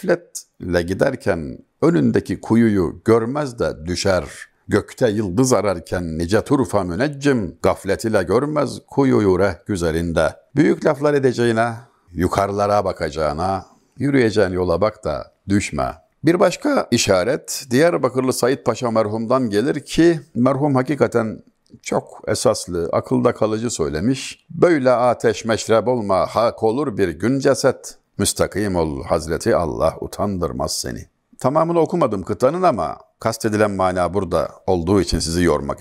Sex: male